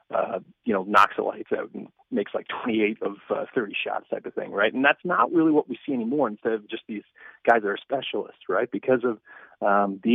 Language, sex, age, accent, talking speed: English, male, 30-49, American, 235 wpm